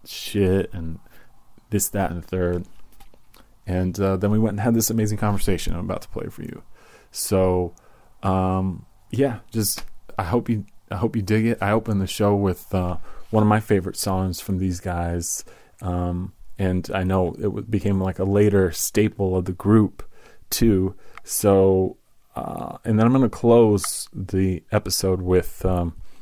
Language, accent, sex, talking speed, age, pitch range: English, American, male, 170 wpm, 30-49, 90-105 Hz